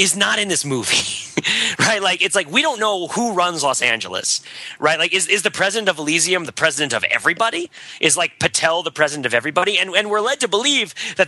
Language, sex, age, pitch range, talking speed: English, male, 30-49, 135-190 Hz, 225 wpm